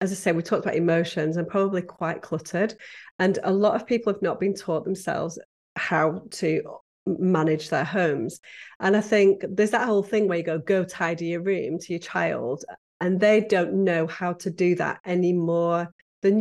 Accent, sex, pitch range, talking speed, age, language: British, female, 170-200 Hz, 195 wpm, 40-59, English